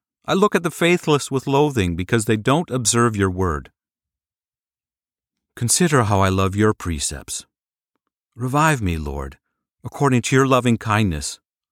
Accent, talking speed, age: American, 140 wpm, 50-69